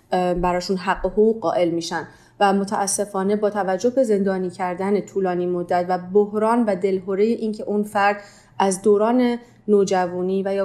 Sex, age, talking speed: female, 30-49, 150 wpm